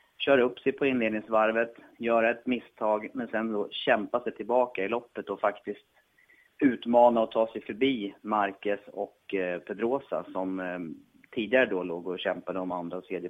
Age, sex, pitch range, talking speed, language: 30-49, male, 100-125 Hz, 165 wpm, Swedish